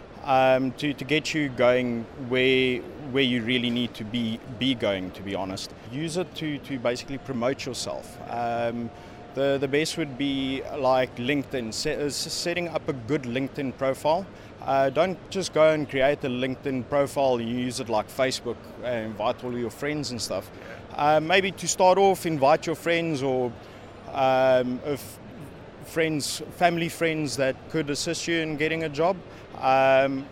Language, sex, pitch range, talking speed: English, male, 125-155 Hz, 165 wpm